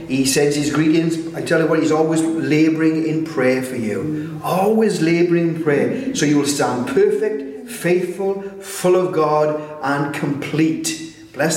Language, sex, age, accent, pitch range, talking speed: English, male, 40-59, British, 140-220 Hz, 160 wpm